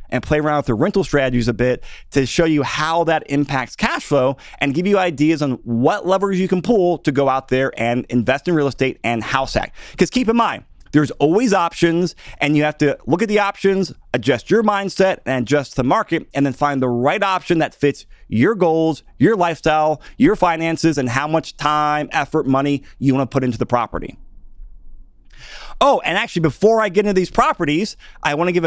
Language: English